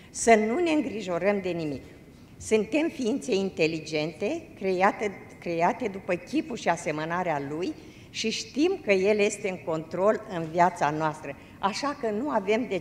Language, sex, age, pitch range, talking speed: Romanian, female, 50-69, 175-225 Hz, 145 wpm